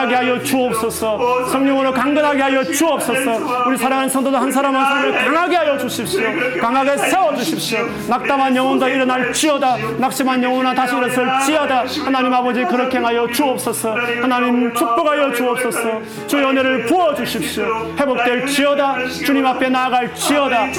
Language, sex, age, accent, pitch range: Korean, male, 30-49, native, 250-285 Hz